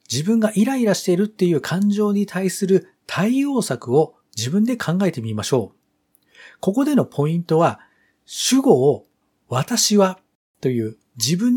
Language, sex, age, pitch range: Japanese, male, 40-59, 130-220 Hz